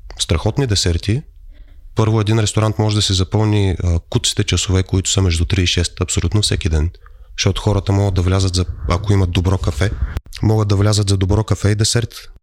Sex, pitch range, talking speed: male, 90-105 Hz, 190 wpm